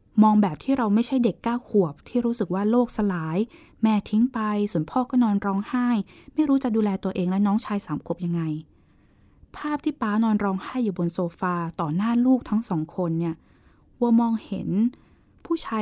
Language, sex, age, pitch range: Thai, female, 20-39, 175-225 Hz